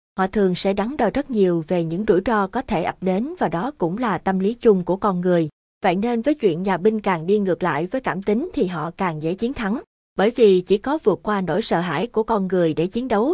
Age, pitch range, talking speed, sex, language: 20-39, 180-230 Hz, 265 wpm, female, Vietnamese